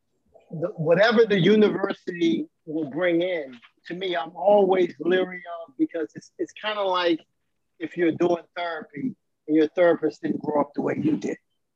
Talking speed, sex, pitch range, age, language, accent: 170 wpm, male, 155-195 Hz, 50-69, English, American